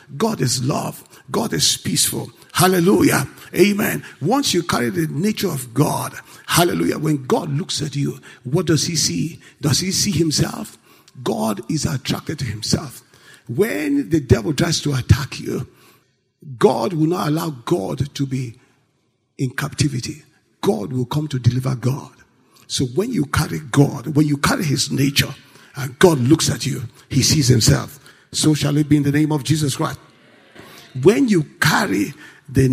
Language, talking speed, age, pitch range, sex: English, 160 wpm, 50-69, 135-170 Hz, male